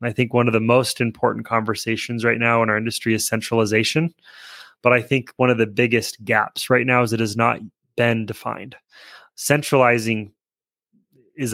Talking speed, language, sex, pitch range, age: 170 wpm, English, male, 115-130 Hz, 20-39